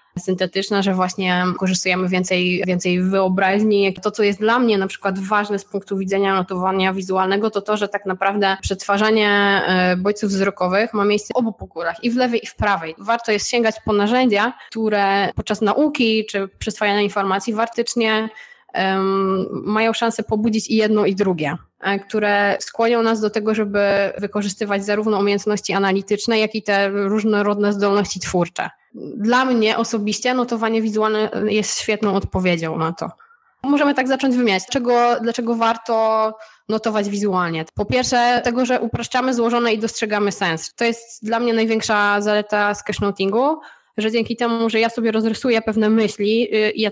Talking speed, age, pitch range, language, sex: 150 wpm, 20-39, 195-225 Hz, Polish, female